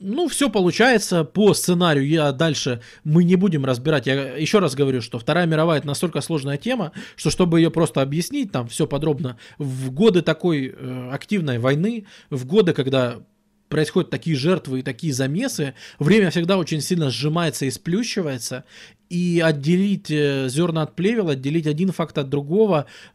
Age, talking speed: 20-39, 160 wpm